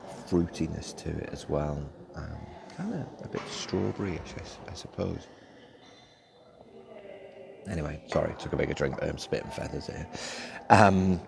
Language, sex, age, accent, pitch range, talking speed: English, male, 30-49, British, 75-100 Hz, 145 wpm